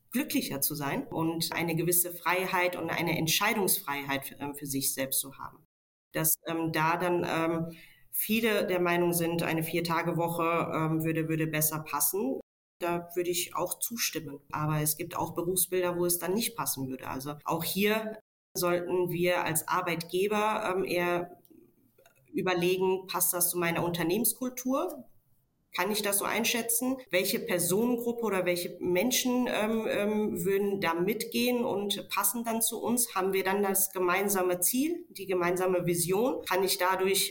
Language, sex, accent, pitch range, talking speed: German, female, German, 165-195 Hz, 150 wpm